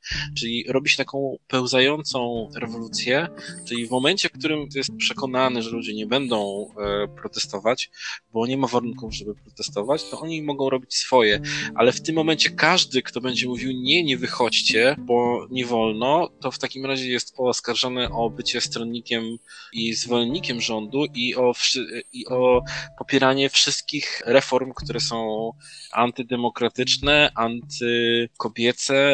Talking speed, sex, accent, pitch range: 135 wpm, male, native, 115-135 Hz